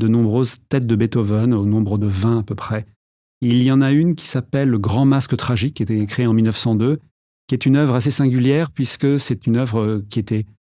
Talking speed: 240 wpm